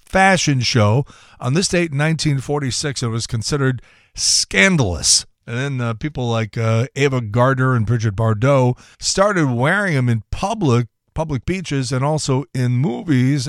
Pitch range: 115-150 Hz